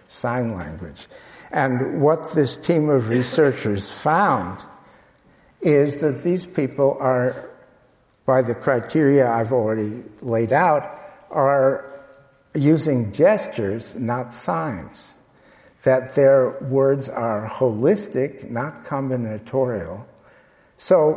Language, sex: English, male